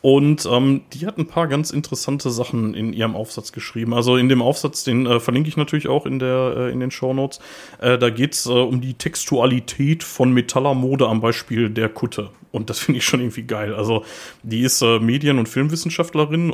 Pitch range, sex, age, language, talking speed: 115-145 Hz, male, 30-49, German, 210 wpm